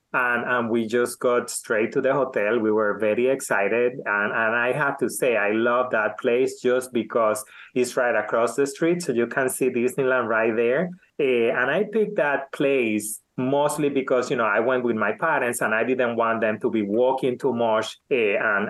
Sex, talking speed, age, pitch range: male, 200 wpm, 30-49, 115-145 Hz